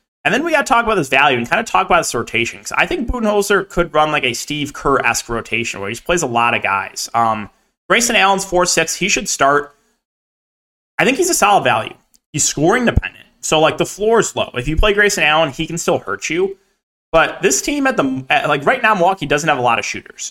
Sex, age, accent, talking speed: male, 20-39, American, 235 wpm